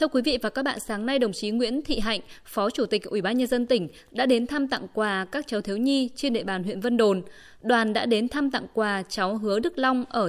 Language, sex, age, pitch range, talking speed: Vietnamese, female, 20-39, 210-260 Hz, 275 wpm